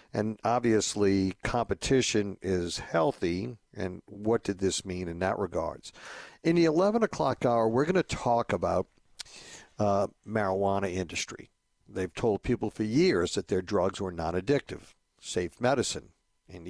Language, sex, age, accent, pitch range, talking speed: English, male, 60-79, American, 95-125 Hz, 140 wpm